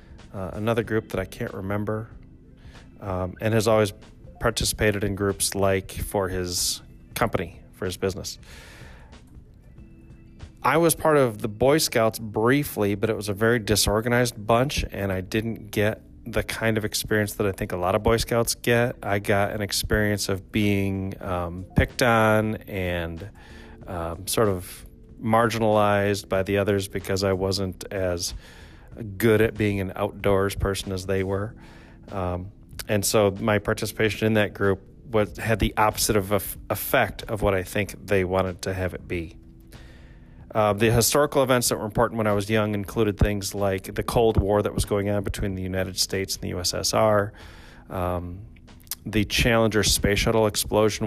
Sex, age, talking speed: male, 30-49, 165 wpm